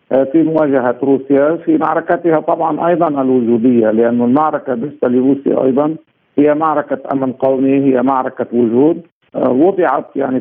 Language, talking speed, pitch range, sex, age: Arabic, 125 wpm, 125-150 Hz, male, 50-69